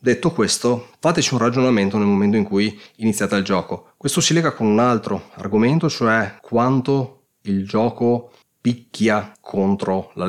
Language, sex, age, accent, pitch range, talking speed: Italian, male, 30-49, native, 100-125 Hz, 150 wpm